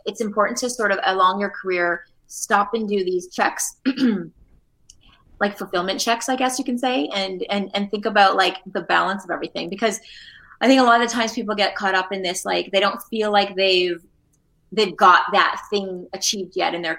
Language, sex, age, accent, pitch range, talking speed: English, female, 20-39, American, 180-215 Hz, 205 wpm